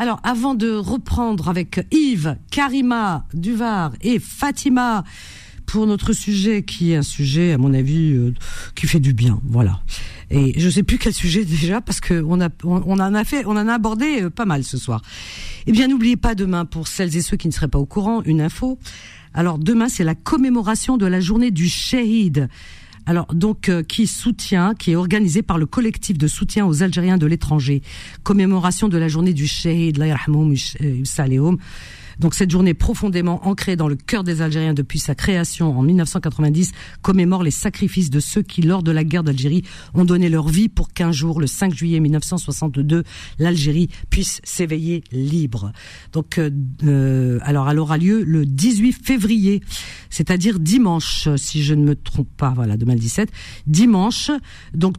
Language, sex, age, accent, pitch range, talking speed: French, female, 50-69, French, 145-200 Hz, 180 wpm